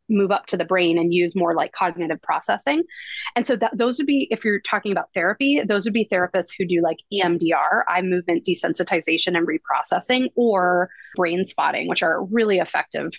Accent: American